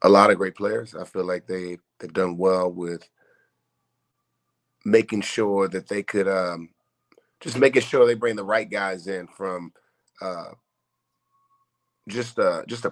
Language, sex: English, male